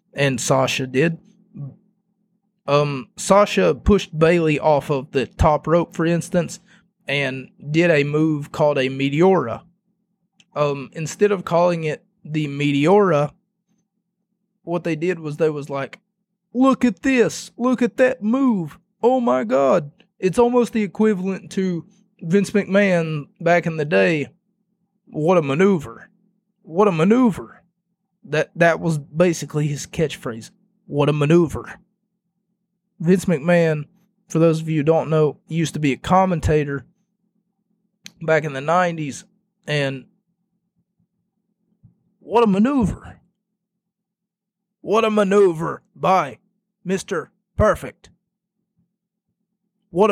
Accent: American